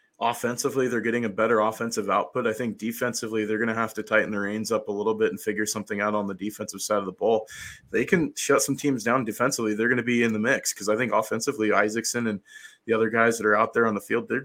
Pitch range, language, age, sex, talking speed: 105-115 Hz, English, 20-39, male, 265 wpm